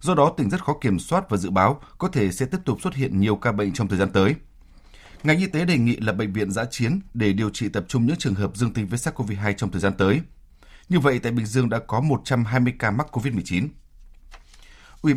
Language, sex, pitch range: Vietnamese, male, 100-130 Hz